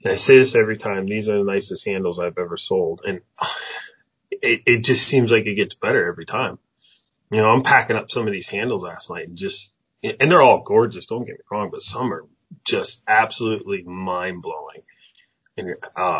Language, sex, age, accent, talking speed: English, male, 30-49, American, 205 wpm